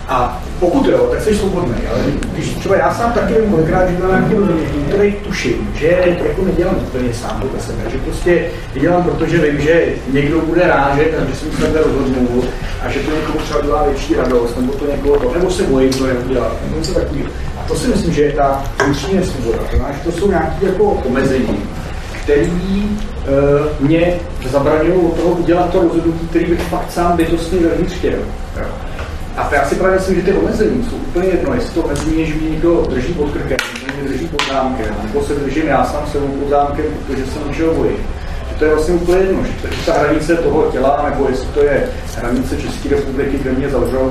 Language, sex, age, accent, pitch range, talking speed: Czech, male, 40-59, native, 130-170 Hz, 205 wpm